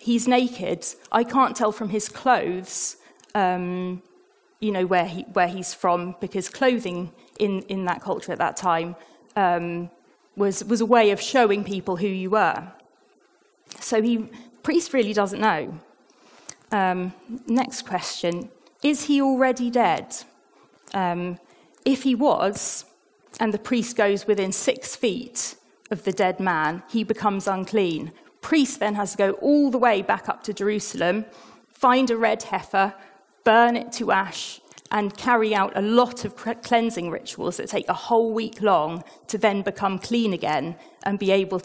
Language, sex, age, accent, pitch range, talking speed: English, female, 30-49, British, 185-245 Hz, 155 wpm